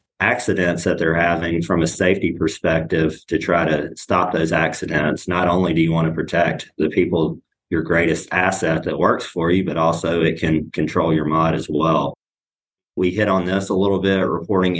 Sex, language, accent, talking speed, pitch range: male, English, American, 190 wpm, 80-90 Hz